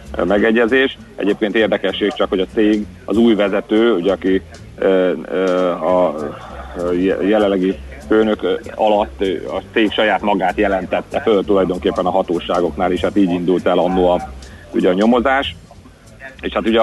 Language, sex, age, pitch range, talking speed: Hungarian, male, 40-59, 90-105 Hz, 145 wpm